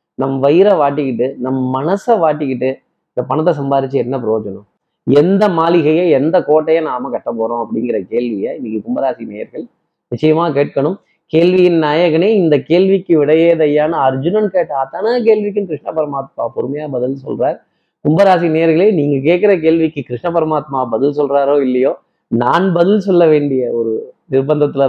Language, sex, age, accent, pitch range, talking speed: Tamil, male, 20-39, native, 135-175 Hz, 135 wpm